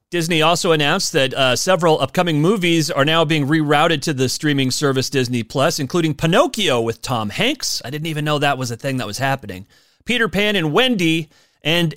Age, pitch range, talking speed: 30-49, 135-190 Hz, 195 wpm